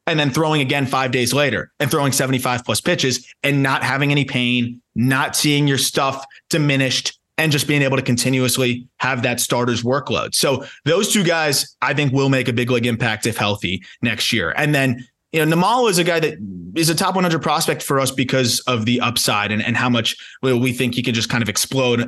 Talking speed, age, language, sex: 215 wpm, 20-39, English, male